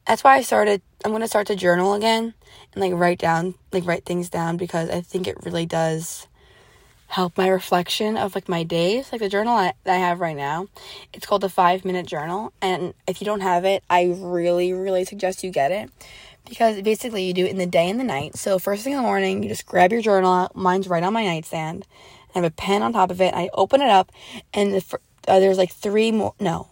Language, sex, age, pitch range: English, female, 20-39, 175-210 Hz